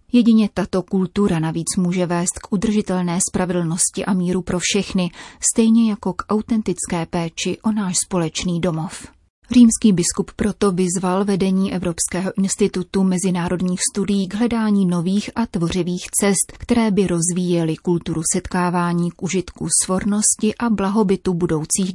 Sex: female